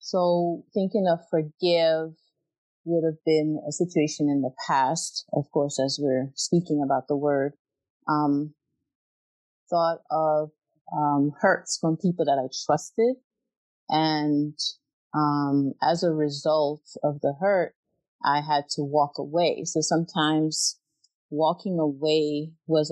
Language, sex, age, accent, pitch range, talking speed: English, female, 30-49, American, 145-165 Hz, 125 wpm